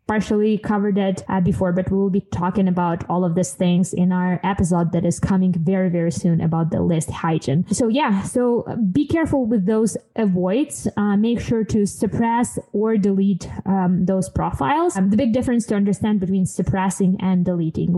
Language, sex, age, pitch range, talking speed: English, female, 20-39, 185-225 Hz, 185 wpm